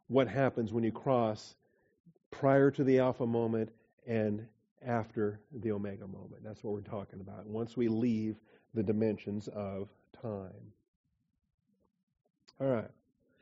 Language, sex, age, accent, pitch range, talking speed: English, male, 50-69, American, 110-135 Hz, 125 wpm